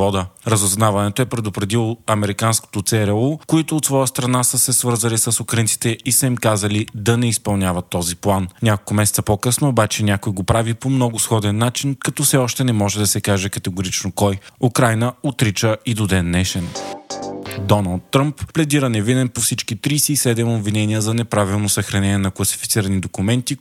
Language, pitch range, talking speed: Bulgarian, 100-125 Hz, 165 wpm